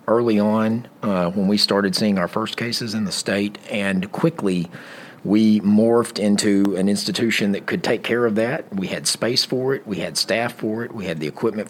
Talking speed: 205 wpm